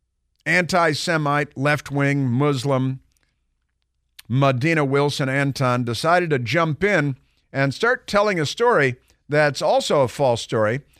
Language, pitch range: English, 115-150 Hz